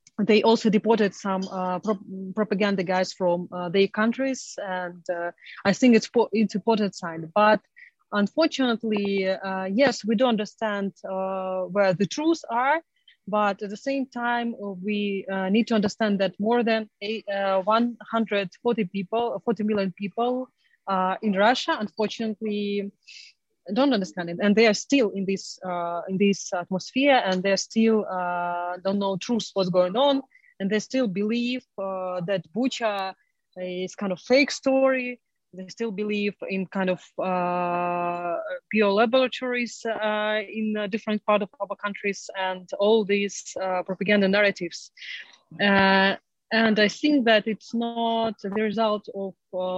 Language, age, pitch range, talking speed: English, 30-49, 190-225 Hz, 155 wpm